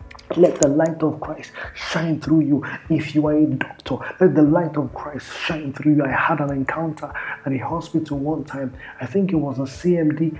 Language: English